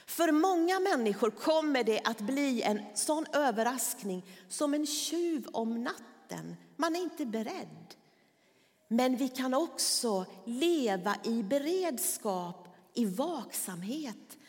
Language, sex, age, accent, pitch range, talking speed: Swedish, female, 40-59, native, 200-290 Hz, 115 wpm